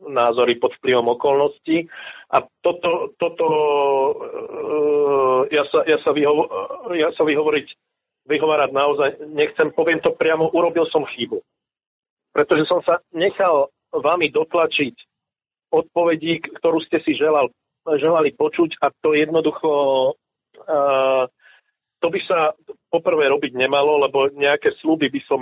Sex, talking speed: male, 125 wpm